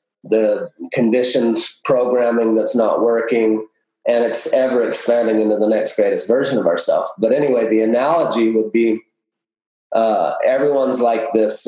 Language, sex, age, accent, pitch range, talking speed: English, male, 30-49, American, 110-155 Hz, 140 wpm